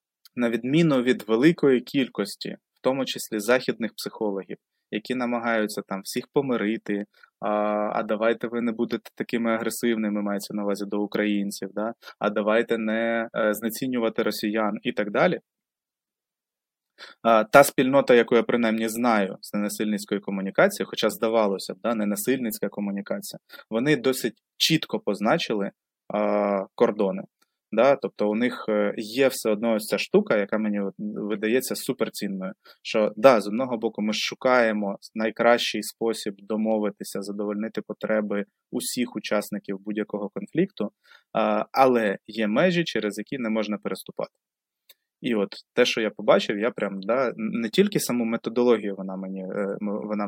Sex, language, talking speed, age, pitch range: male, Ukrainian, 135 wpm, 20-39, 105-120 Hz